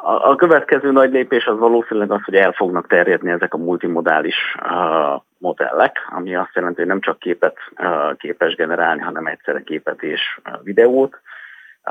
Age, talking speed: 30-49, 145 wpm